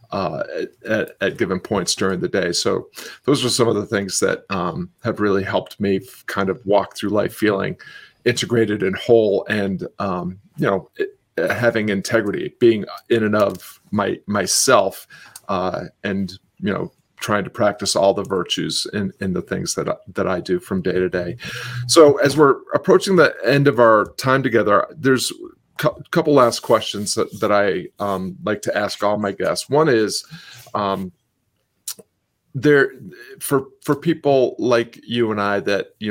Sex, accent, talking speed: male, American, 170 wpm